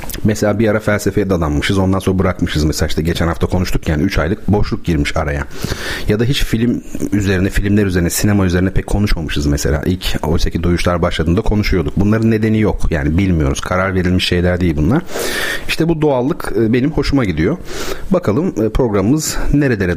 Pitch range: 90-115 Hz